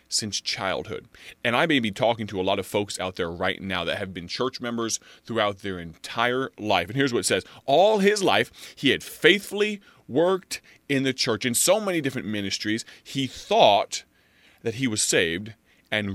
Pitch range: 100-125 Hz